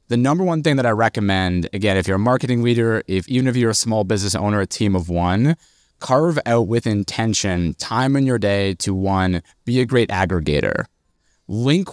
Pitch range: 95-120 Hz